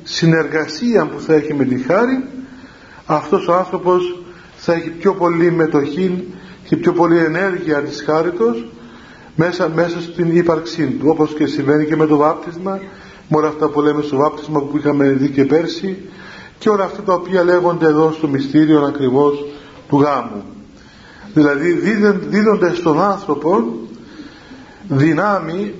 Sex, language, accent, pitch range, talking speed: male, Greek, native, 150-190 Hz, 145 wpm